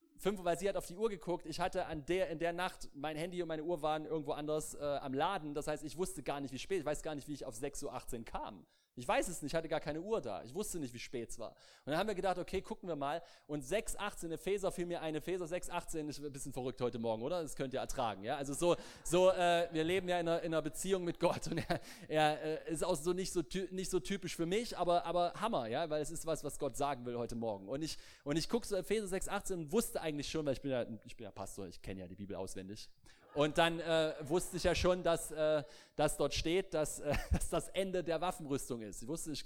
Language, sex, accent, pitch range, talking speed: German, male, German, 140-175 Hz, 275 wpm